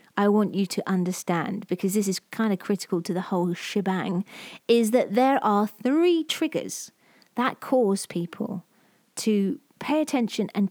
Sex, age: female, 30-49